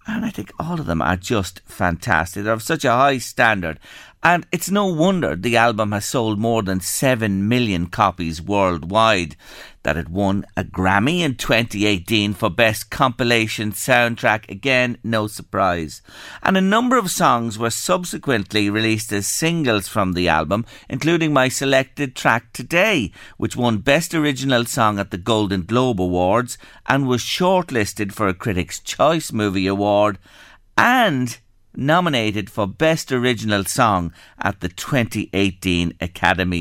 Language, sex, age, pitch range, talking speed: English, male, 50-69, 100-140 Hz, 150 wpm